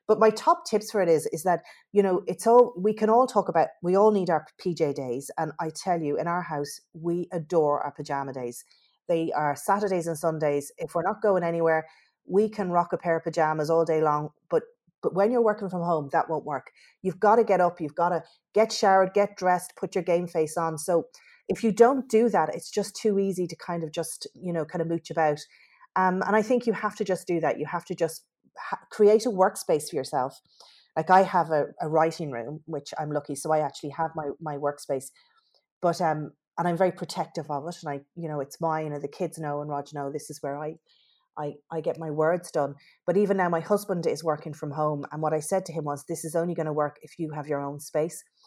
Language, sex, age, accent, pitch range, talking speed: English, female, 30-49, Irish, 155-195 Hz, 245 wpm